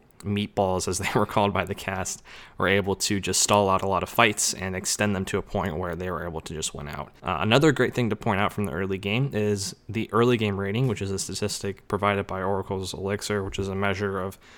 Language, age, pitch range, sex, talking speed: English, 20-39, 95-110 Hz, male, 250 wpm